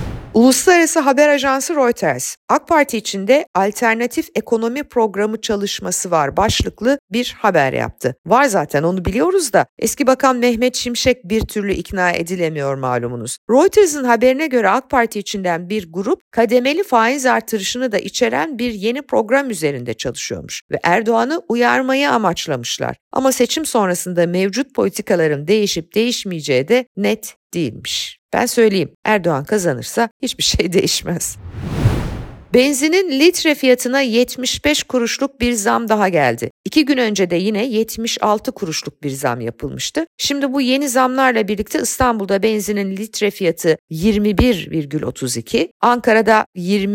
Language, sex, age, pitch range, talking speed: Turkish, female, 50-69, 185-255 Hz, 125 wpm